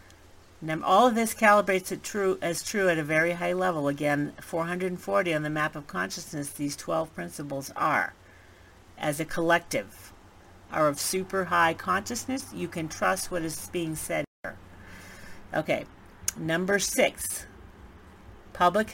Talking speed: 145 wpm